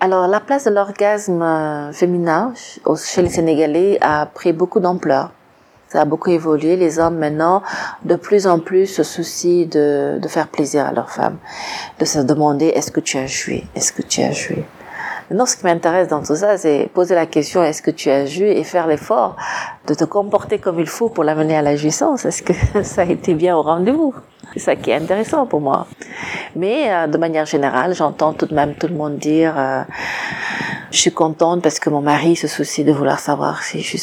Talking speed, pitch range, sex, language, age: 215 wpm, 150-180 Hz, female, French, 40-59